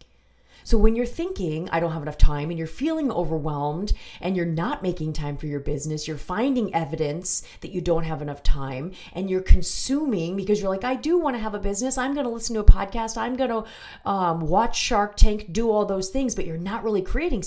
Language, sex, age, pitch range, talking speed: English, female, 30-49, 160-210 Hz, 225 wpm